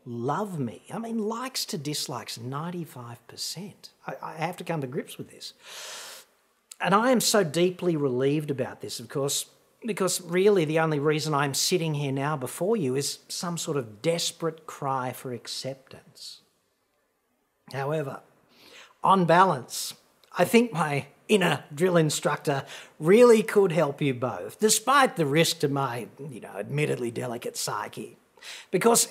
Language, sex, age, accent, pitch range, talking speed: English, male, 40-59, Australian, 140-205 Hz, 145 wpm